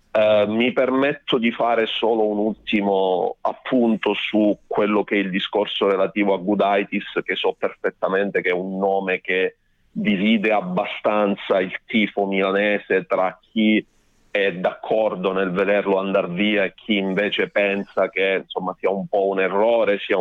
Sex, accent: male, native